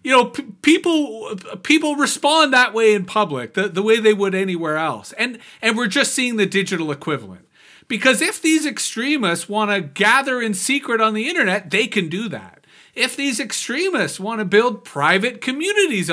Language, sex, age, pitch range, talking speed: English, male, 40-59, 175-250 Hz, 185 wpm